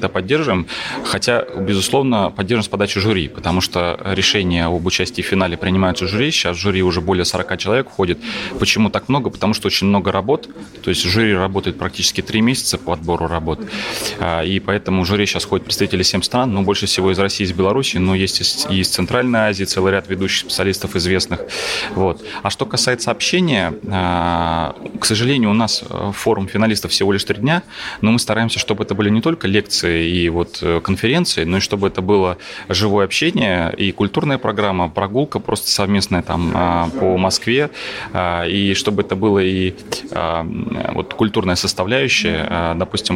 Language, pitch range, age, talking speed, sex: Russian, 90-105 Hz, 30-49, 175 wpm, male